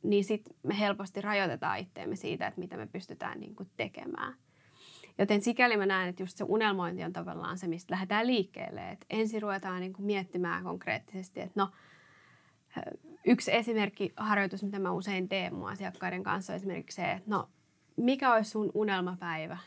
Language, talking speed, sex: Finnish, 160 wpm, female